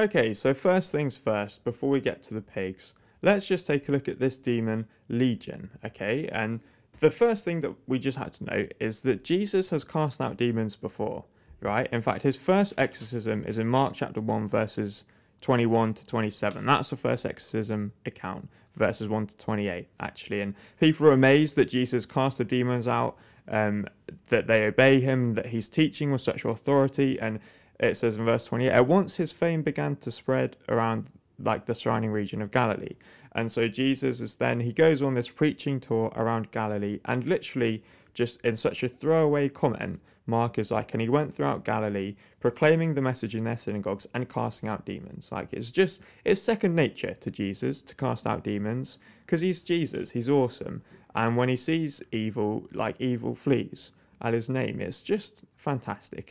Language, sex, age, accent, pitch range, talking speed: English, male, 20-39, British, 110-140 Hz, 185 wpm